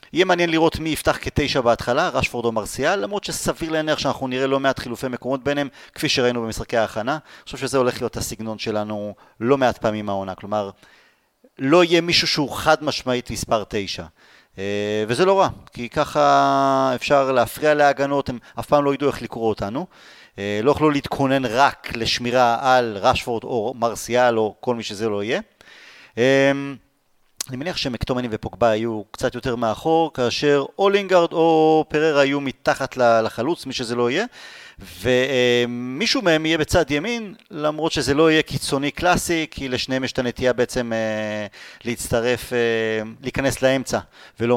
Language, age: Hebrew, 30-49